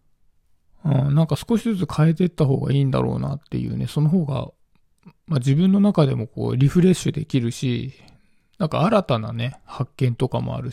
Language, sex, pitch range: Japanese, male, 130-200 Hz